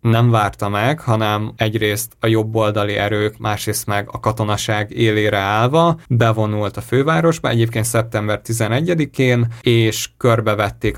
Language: Hungarian